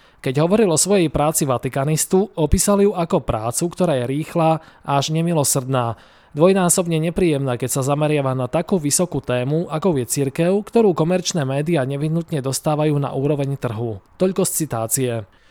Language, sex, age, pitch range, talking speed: Slovak, male, 20-39, 130-165 Hz, 145 wpm